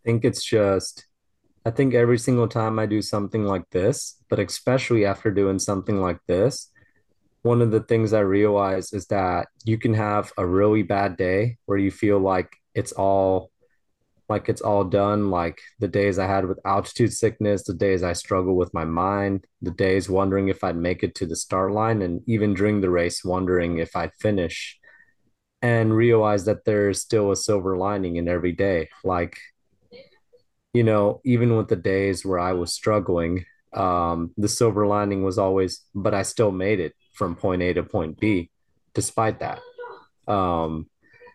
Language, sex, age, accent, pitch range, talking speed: English, male, 30-49, American, 90-110 Hz, 180 wpm